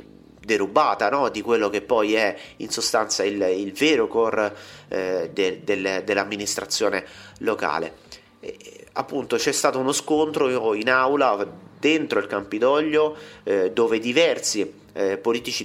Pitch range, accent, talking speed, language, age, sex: 100-130 Hz, native, 130 wpm, Italian, 30-49, male